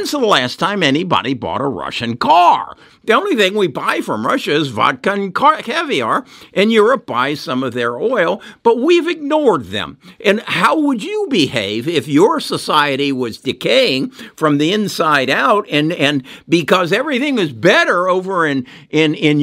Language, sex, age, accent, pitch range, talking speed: English, male, 60-79, American, 145-235 Hz, 165 wpm